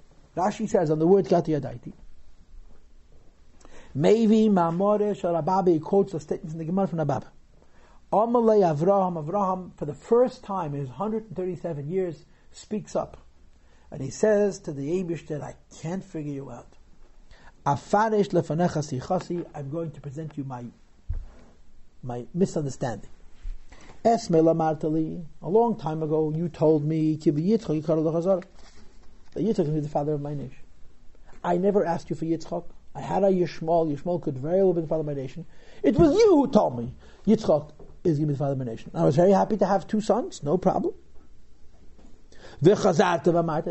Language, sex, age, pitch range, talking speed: English, male, 50-69, 150-210 Hz, 160 wpm